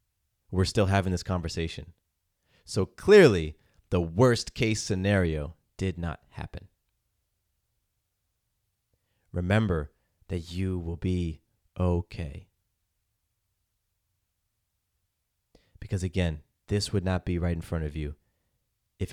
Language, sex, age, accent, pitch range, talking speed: English, male, 30-49, American, 90-105 Hz, 100 wpm